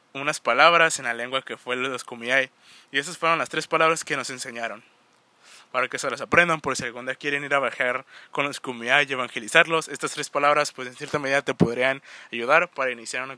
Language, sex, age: Spanish, male, 20-39